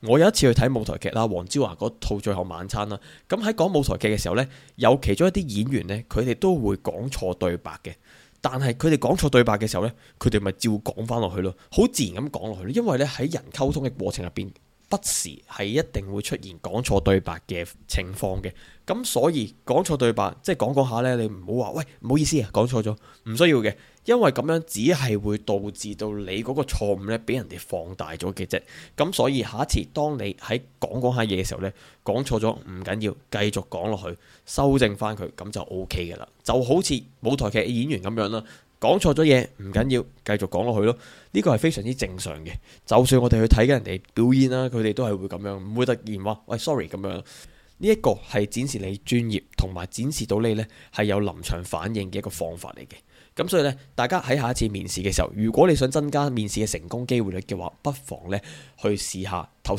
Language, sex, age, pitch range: Chinese, male, 20-39, 100-130 Hz